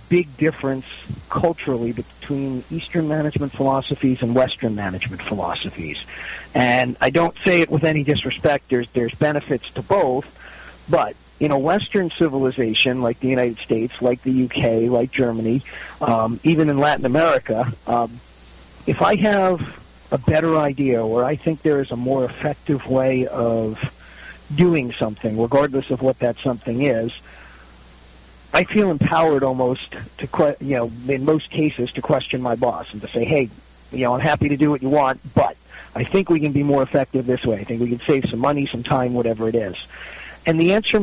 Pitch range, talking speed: 120-155 Hz, 175 wpm